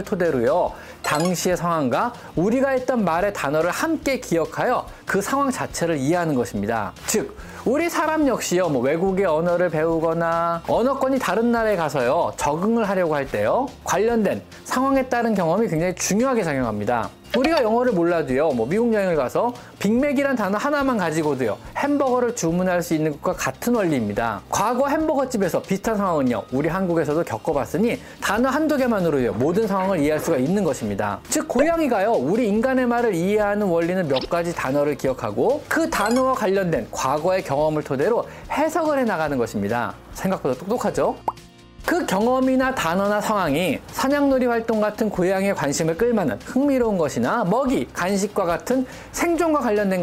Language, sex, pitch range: Korean, male, 165-255 Hz